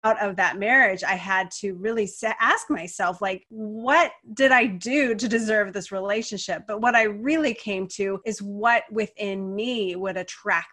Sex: female